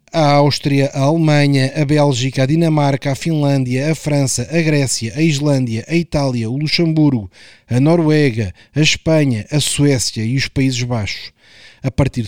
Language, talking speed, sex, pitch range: Portuguese, 155 wpm, male, 135-175 Hz